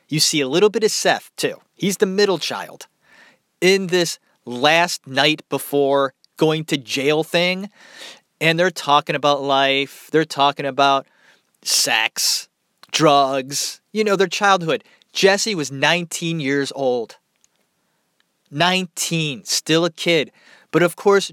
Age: 30-49